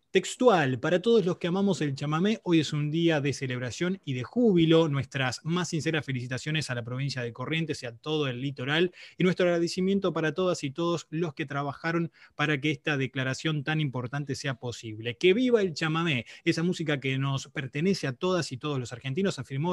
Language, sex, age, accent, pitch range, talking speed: Spanish, male, 20-39, Argentinian, 130-170 Hz, 200 wpm